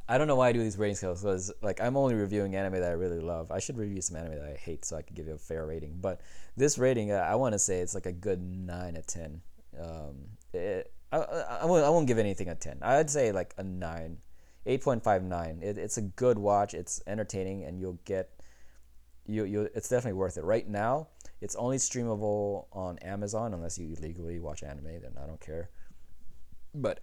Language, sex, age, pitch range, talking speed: English, male, 20-39, 85-115 Hz, 225 wpm